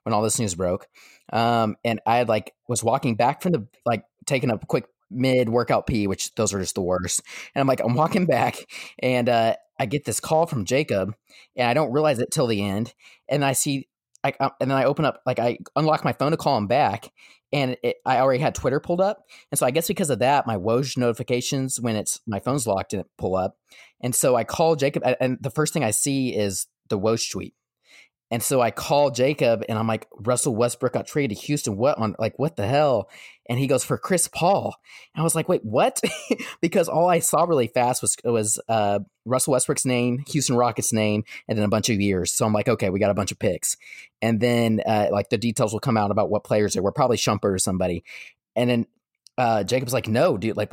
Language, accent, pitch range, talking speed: English, American, 110-135 Hz, 230 wpm